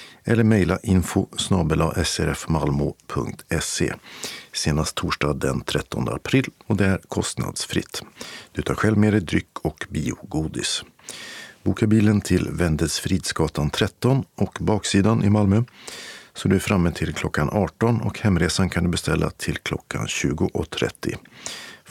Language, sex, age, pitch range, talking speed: Swedish, male, 50-69, 80-110 Hz, 125 wpm